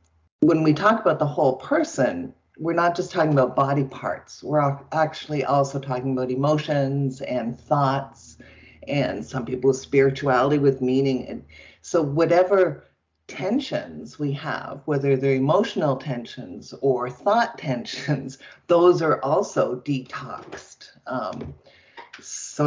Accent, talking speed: American, 125 wpm